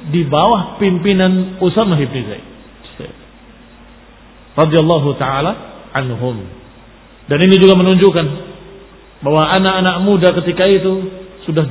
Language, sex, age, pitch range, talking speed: Indonesian, male, 40-59, 130-195 Hz, 90 wpm